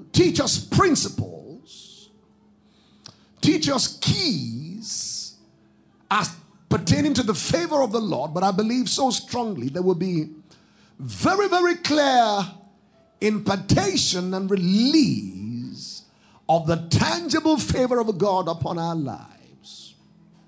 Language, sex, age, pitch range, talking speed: English, male, 50-69, 185-245 Hz, 110 wpm